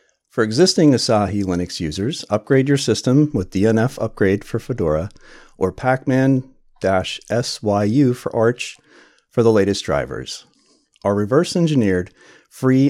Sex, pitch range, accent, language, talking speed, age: male, 100-135 Hz, American, English, 110 wpm, 40-59